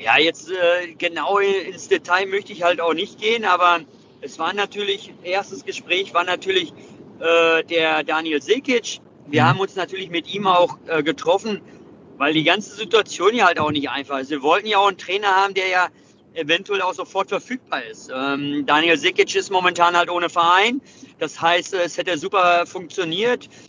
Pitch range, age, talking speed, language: 170-210 Hz, 40-59, 180 wpm, German